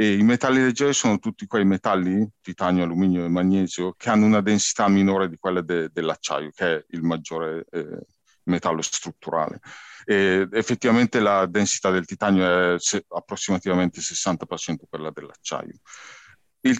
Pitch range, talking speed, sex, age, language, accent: 85-105 Hz, 150 wpm, male, 40-59, Italian, native